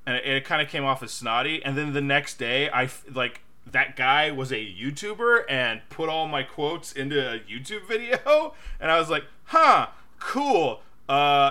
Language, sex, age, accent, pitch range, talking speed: English, male, 20-39, American, 125-175 Hz, 200 wpm